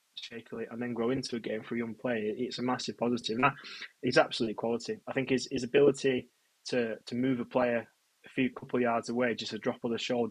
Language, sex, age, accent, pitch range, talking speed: English, male, 20-39, British, 115-130 Hz, 225 wpm